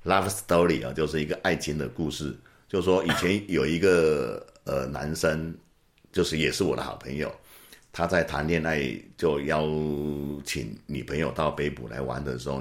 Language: Chinese